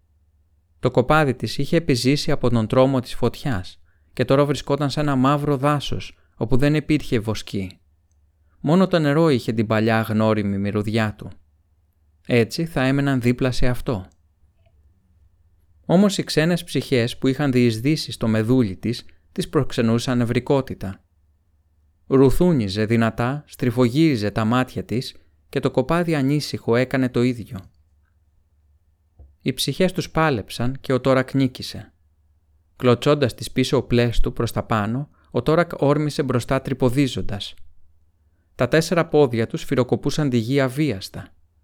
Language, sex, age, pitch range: Greek, male, 30-49, 85-135 Hz